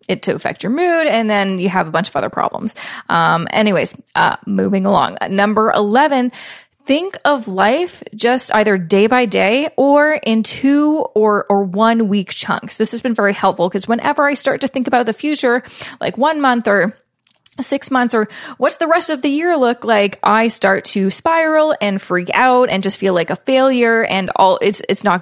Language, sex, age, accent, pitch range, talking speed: English, female, 20-39, American, 190-260 Hz, 200 wpm